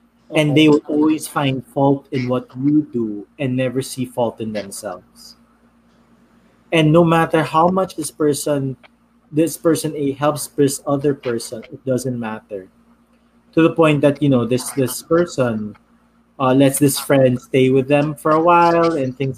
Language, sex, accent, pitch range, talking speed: English, male, Filipino, 130-160 Hz, 165 wpm